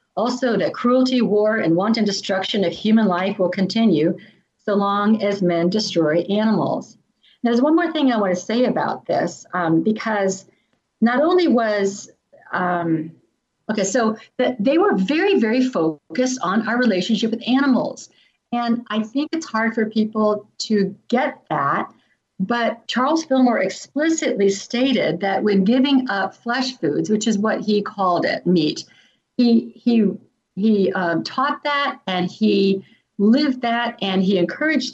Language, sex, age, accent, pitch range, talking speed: English, female, 50-69, American, 195-255 Hz, 155 wpm